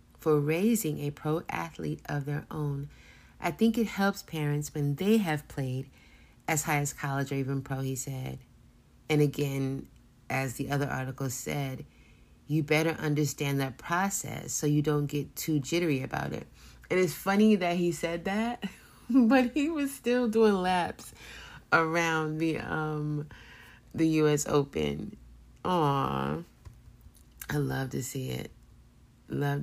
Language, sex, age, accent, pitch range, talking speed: English, female, 30-49, American, 135-170 Hz, 145 wpm